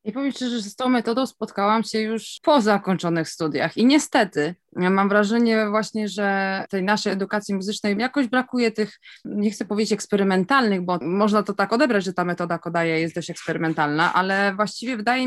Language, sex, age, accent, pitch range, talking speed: Polish, female, 20-39, native, 175-220 Hz, 180 wpm